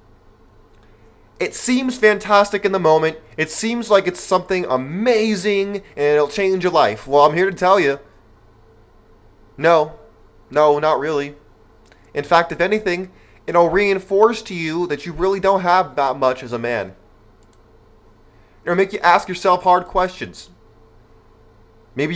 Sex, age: male, 20-39